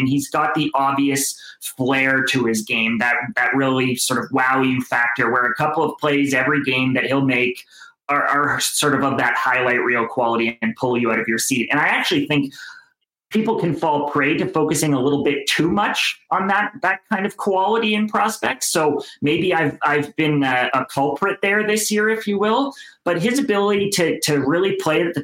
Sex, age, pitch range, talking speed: male, 30-49, 130-155 Hz, 210 wpm